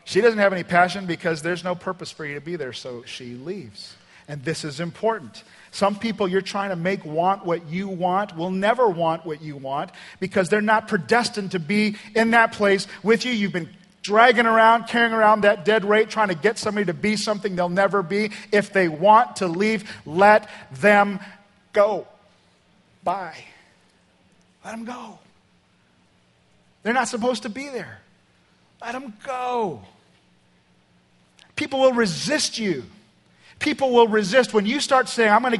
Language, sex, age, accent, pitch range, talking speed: English, male, 40-59, American, 175-225 Hz, 170 wpm